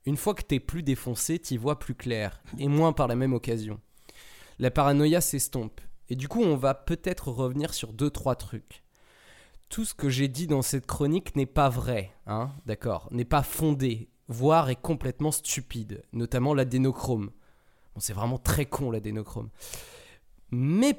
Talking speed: 165 wpm